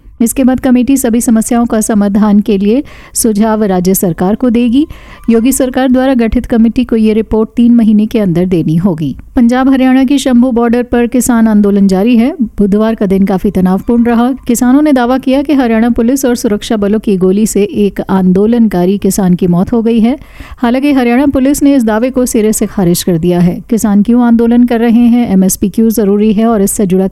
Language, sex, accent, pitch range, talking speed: Hindi, female, native, 200-245 Hz, 200 wpm